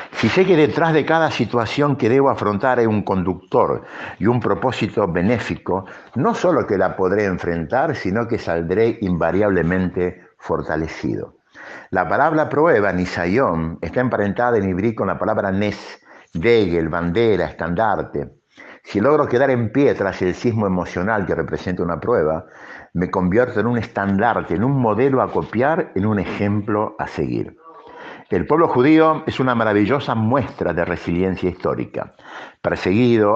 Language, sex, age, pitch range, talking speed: Spanish, male, 60-79, 90-125 Hz, 150 wpm